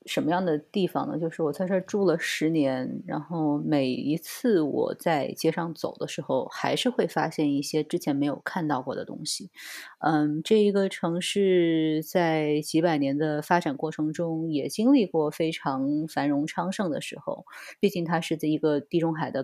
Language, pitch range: Chinese, 150-180 Hz